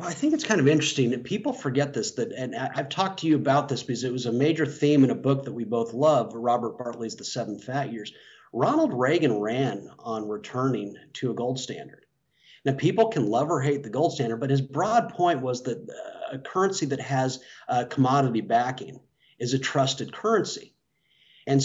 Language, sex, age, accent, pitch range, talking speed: English, male, 40-59, American, 120-145 Hz, 200 wpm